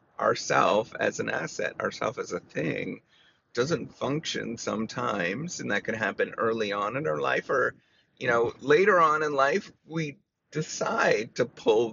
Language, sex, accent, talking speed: English, male, American, 155 wpm